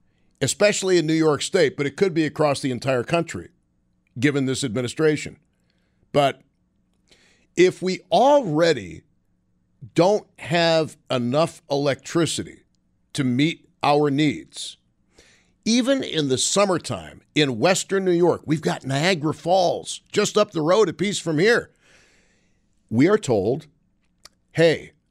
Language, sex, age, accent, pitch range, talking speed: English, male, 50-69, American, 140-175 Hz, 125 wpm